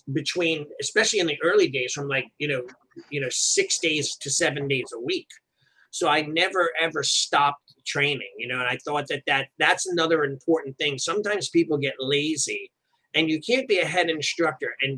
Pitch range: 135-170 Hz